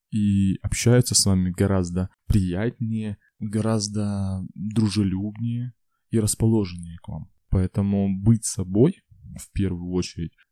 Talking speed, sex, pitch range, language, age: 105 wpm, male, 95-120 Hz, Russian, 20-39